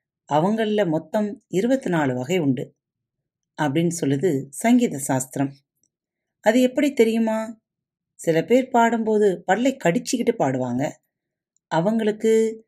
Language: Tamil